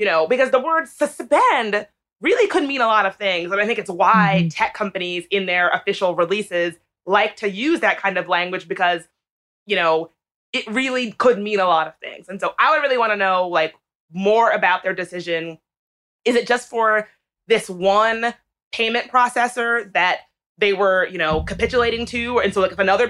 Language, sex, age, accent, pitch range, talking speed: English, female, 20-39, American, 185-235 Hz, 195 wpm